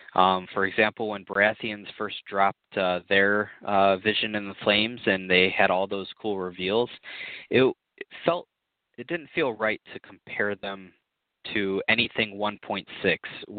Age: 20-39